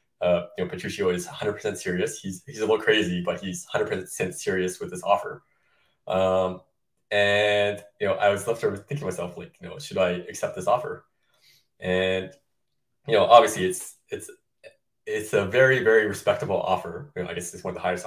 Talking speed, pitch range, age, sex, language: 195 wpm, 90-110 Hz, 20-39, male, English